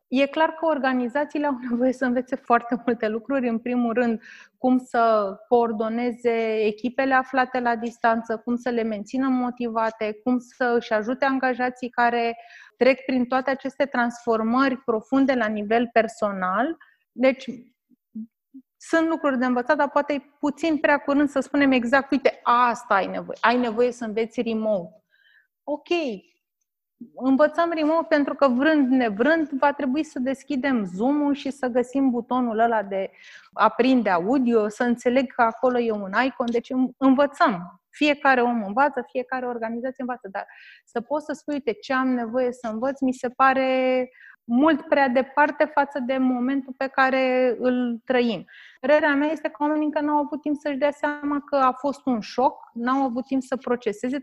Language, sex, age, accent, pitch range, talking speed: Romanian, female, 30-49, native, 235-280 Hz, 160 wpm